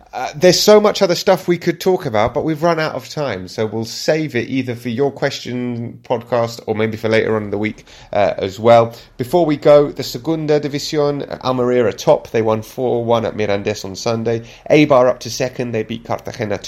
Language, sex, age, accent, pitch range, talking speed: English, male, 30-49, British, 110-150 Hz, 210 wpm